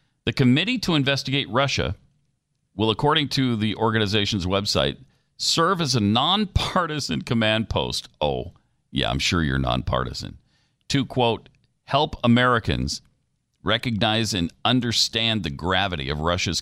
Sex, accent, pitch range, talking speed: male, American, 85-125 Hz, 125 wpm